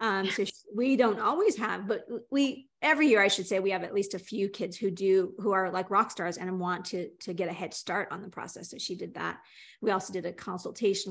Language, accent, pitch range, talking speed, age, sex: English, American, 185-230 Hz, 255 wpm, 30-49, female